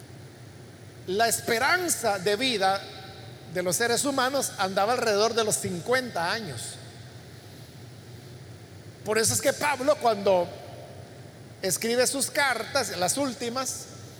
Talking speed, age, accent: 105 wpm, 50-69, Mexican